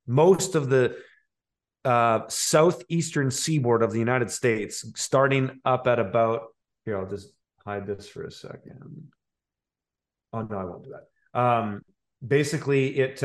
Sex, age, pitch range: male, 30-49, 115-145 Hz